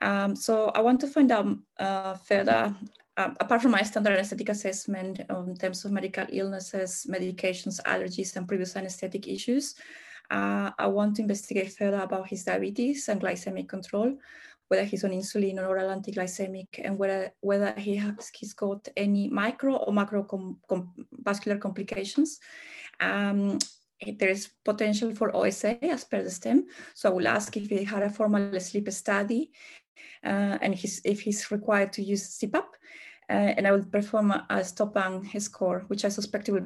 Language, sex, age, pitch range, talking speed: English, female, 20-39, 195-220 Hz, 170 wpm